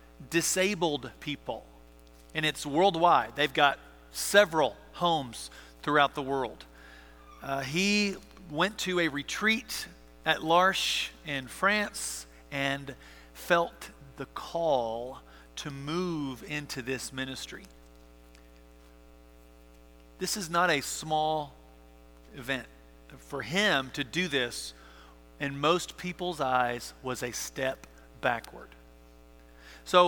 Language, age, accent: English, 40-59, American